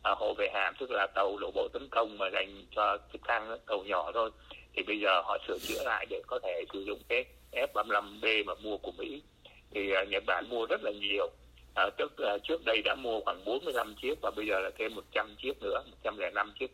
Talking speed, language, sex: 235 wpm, Vietnamese, male